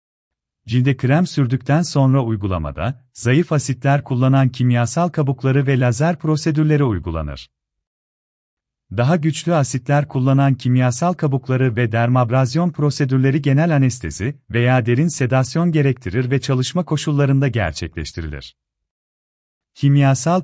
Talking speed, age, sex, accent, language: 100 wpm, 40-59, male, native, Turkish